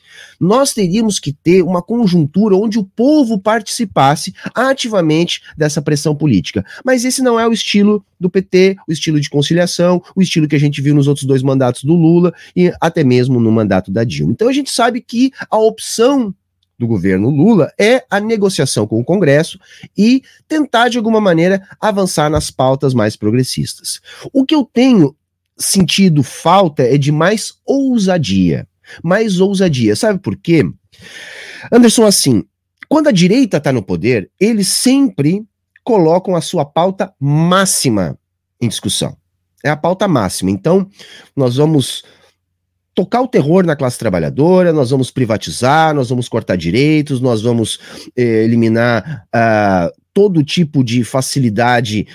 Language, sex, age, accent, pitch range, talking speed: Portuguese, male, 30-49, Brazilian, 115-195 Hz, 150 wpm